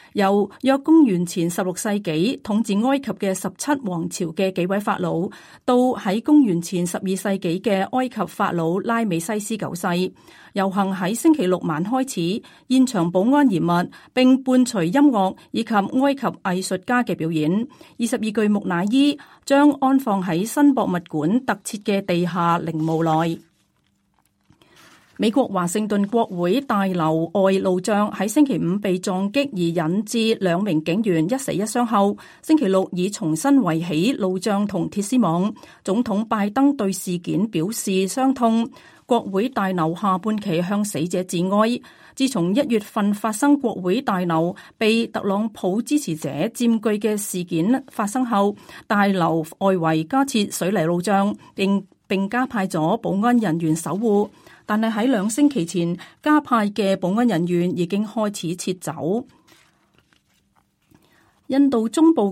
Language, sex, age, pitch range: Chinese, female, 40-59, 180-235 Hz